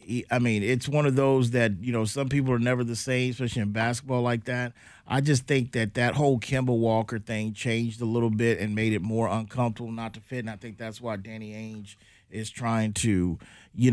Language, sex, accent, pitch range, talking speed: English, male, American, 110-135 Hz, 225 wpm